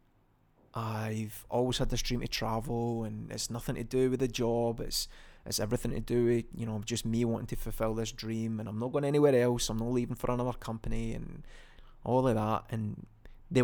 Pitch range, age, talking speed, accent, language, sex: 110-120 Hz, 20-39, 210 wpm, British, English, male